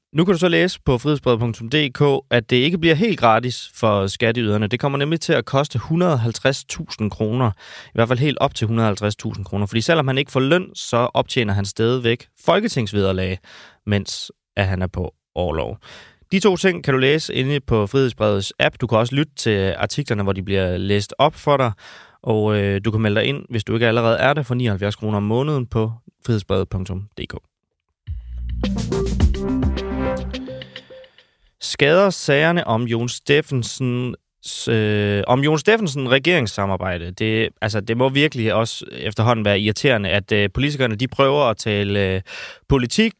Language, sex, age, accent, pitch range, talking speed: Danish, male, 30-49, native, 105-135 Hz, 160 wpm